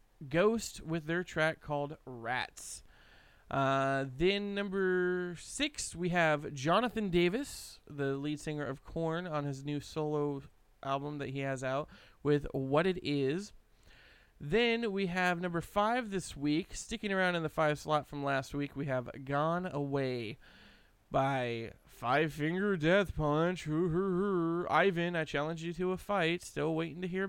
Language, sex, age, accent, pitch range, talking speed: English, male, 20-39, American, 140-185 Hz, 150 wpm